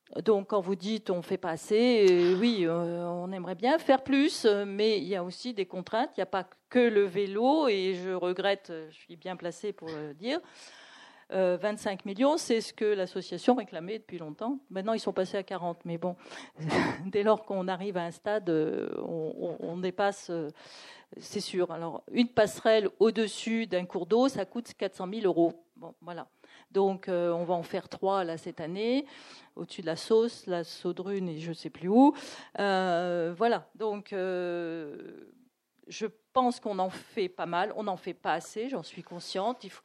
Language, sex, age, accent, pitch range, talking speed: French, female, 40-59, French, 180-220 Hz, 185 wpm